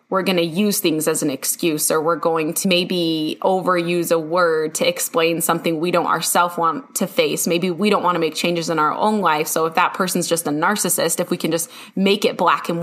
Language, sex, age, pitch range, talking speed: English, female, 20-39, 165-205 Hz, 240 wpm